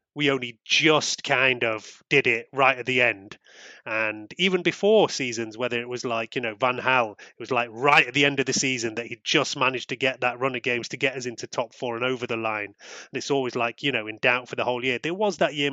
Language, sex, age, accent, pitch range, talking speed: English, male, 30-49, British, 115-135 Hz, 265 wpm